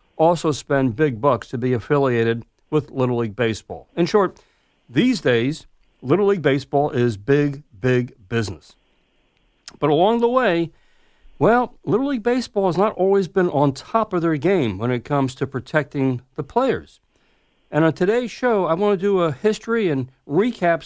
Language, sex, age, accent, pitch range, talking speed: English, male, 60-79, American, 135-190 Hz, 165 wpm